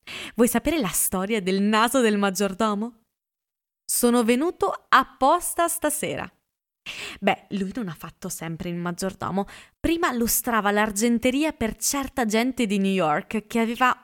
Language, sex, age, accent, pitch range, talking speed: Italian, female, 20-39, native, 195-255 Hz, 135 wpm